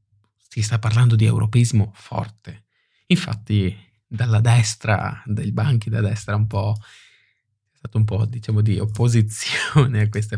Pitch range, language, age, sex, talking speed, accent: 110-130 Hz, Italian, 20-39, male, 140 wpm, native